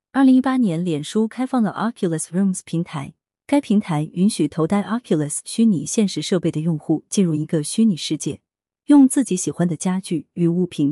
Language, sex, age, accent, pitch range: Chinese, female, 30-49, native, 160-220 Hz